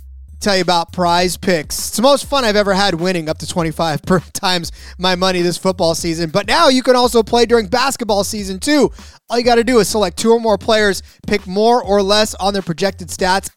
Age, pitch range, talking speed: 20-39, 175-215 Hz, 225 wpm